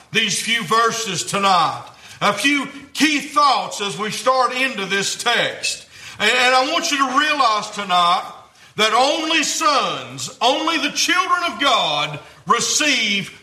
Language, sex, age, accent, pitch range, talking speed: English, male, 50-69, American, 220-295 Hz, 135 wpm